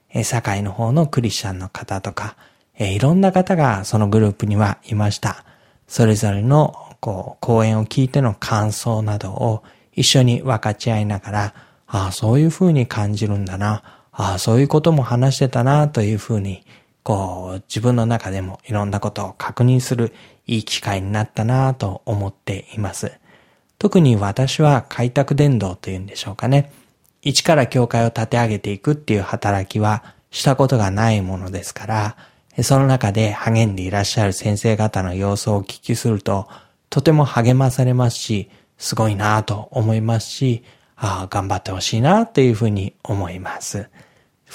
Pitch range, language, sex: 105-130 Hz, Japanese, male